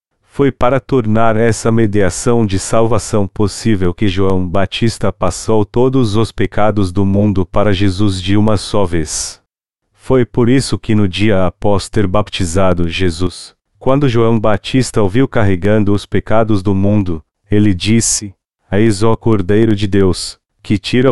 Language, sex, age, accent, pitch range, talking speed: Portuguese, male, 40-59, Brazilian, 95-115 Hz, 150 wpm